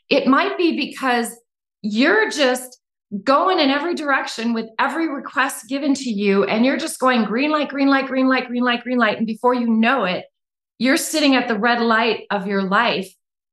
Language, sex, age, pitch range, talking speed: English, female, 30-49, 195-250 Hz, 195 wpm